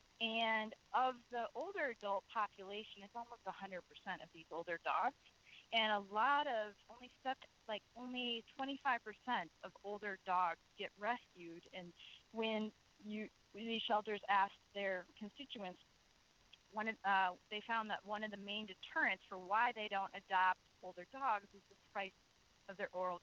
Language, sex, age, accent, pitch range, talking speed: English, female, 20-39, American, 185-220 Hz, 155 wpm